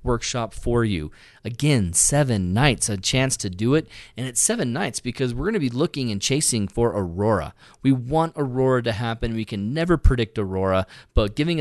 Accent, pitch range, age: American, 110-145 Hz, 30-49